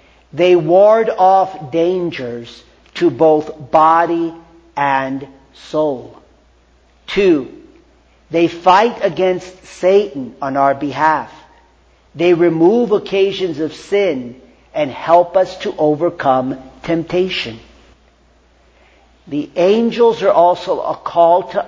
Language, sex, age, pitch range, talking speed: English, male, 50-69, 145-185 Hz, 95 wpm